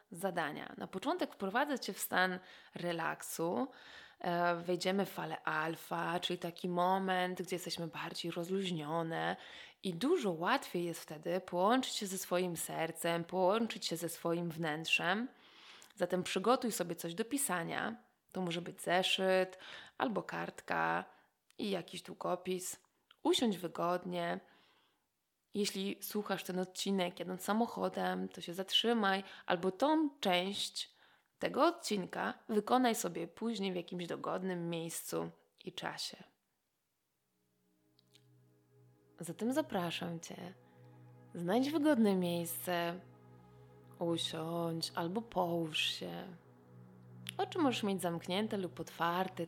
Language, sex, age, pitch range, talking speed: Polish, female, 20-39, 165-195 Hz, 110 wpm